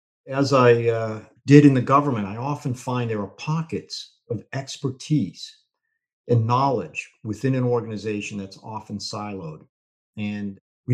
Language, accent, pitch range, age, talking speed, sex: English, American, 100-130 Hz, 50-69, 135 wpm, male